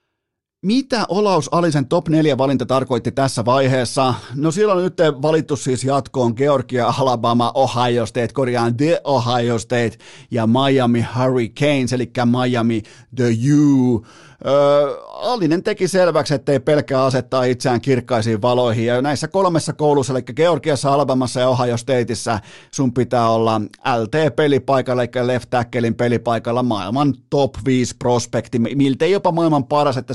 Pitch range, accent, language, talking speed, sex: 120-150 Hz, native, Finnish, 135 wpm, male